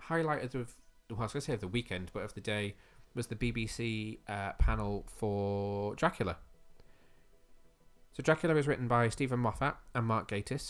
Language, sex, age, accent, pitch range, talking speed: English, male, 20-39, British, 100-120 Hz, 175 wpm